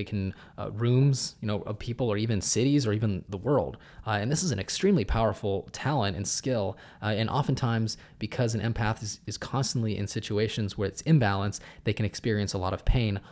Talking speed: 210 wpm